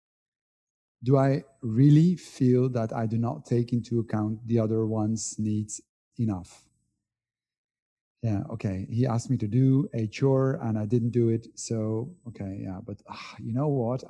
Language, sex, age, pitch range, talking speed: English, male, 40-59, 115-135 Hz, 160 wpm